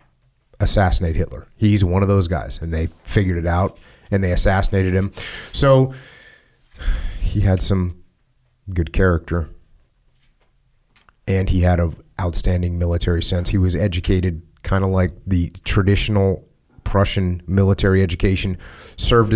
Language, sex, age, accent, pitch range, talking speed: English, male, 30-49, American, 90-110 Hz, 125 wpm